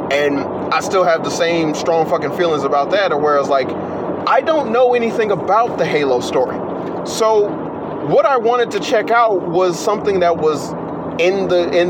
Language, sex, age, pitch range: English, male, 30-49, 175-235 Hz